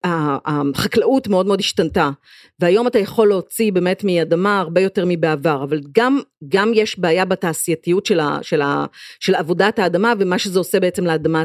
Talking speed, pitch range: 150 wpm, 180-245 Hz